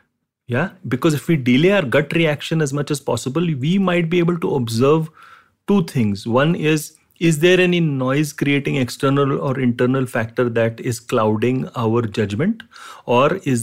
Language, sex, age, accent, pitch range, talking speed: English, male, 30-49, Indian, 120-160 Hz, 165 wpm